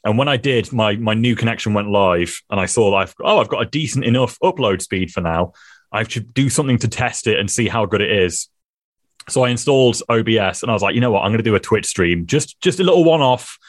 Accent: British